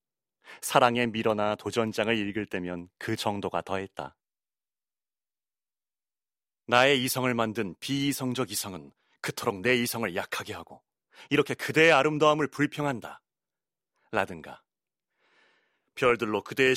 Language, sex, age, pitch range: Korean, male, 30-49, 110-170 Hz